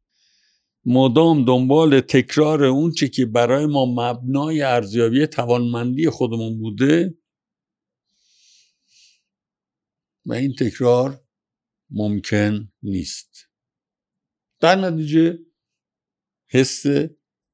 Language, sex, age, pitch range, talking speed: Persian, male, 60-79, 105-145 Hz, 70 wpm